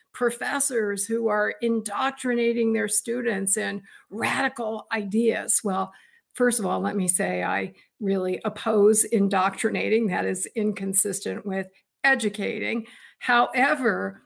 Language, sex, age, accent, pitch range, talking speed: English, female, 50-69, American, 200-240 Hz, 110 wpm